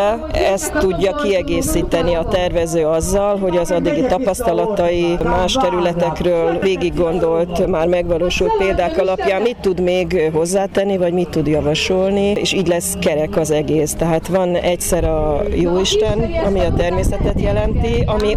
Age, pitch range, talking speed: 30-49, 160-190 Hz, 135 wpm